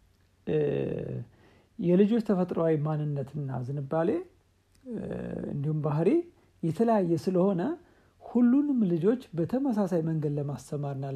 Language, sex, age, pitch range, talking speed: Amharic, male, 60-79, 145-195 Hz, 70 wpm